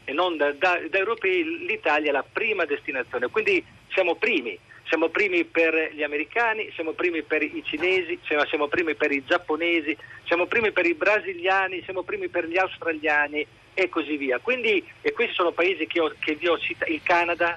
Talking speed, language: 190 wpm, Italian